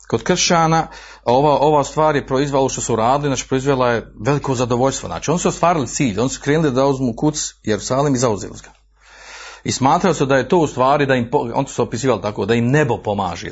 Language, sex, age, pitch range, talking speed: Croatian, male, 40-59, 105-145 Hz, 220 wpm